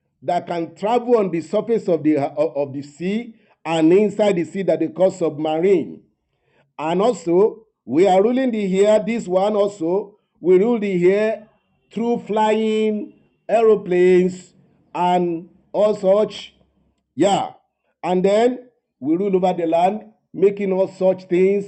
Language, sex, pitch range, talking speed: English, male, 175-220 Hz, 140 wpm